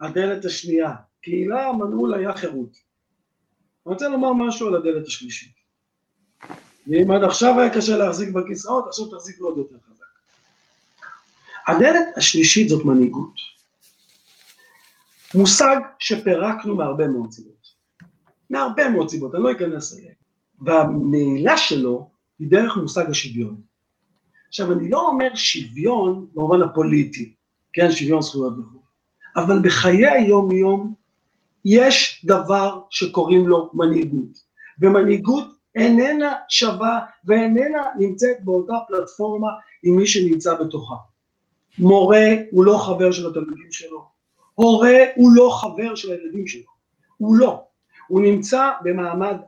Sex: male